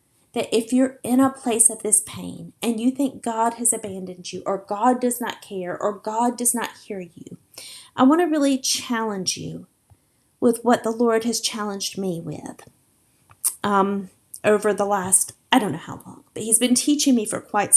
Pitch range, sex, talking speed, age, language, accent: 205-260 Hz, female, 190 wpm, 30-49, English, American